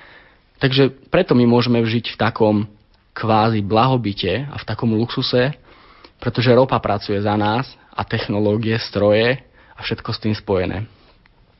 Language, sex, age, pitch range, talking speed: Slovak, male, 20-39, 110-130 Hz, 135 wpm